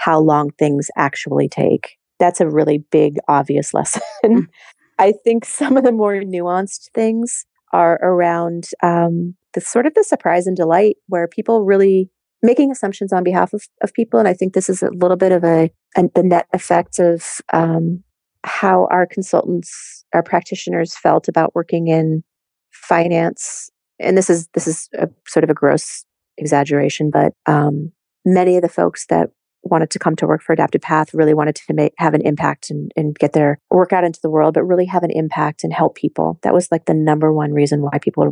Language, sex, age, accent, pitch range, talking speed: English, female, 40-59, American, 155-185 Hz, 195 wpm